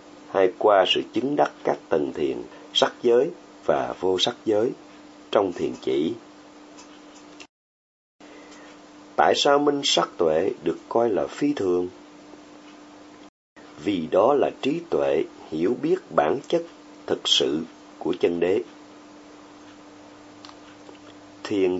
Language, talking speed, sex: Vietnamese, 115 wpm, male